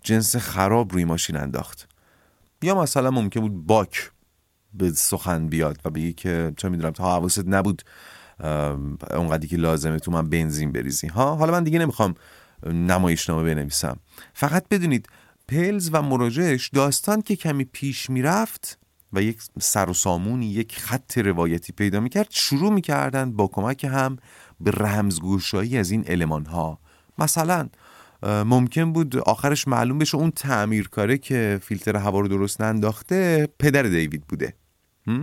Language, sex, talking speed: Persian, male, 145 wpm